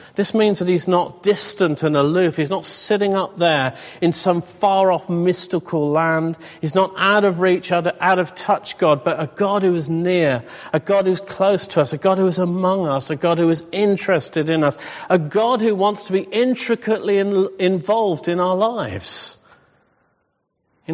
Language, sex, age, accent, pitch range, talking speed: English, male, 50-69, British, 165-200 Hz, 185 wpm